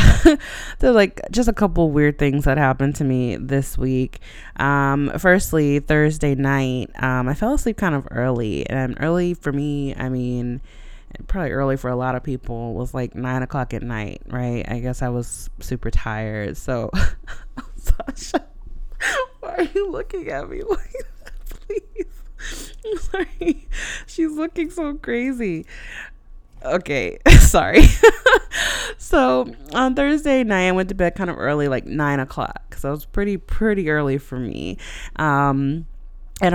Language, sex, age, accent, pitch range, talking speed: English, female, 20-39, American, 125-185 Hz, 155 wpm